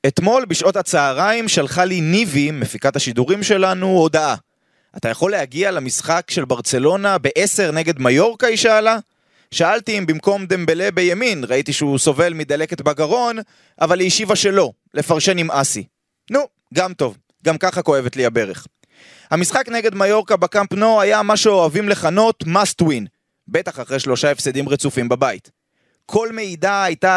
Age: 20-39